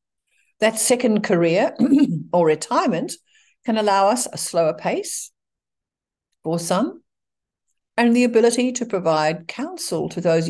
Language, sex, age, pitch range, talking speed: English, female, 60-79, 165-245 Hz, 120 wpm